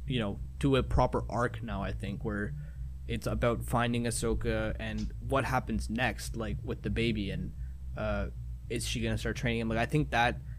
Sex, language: male, English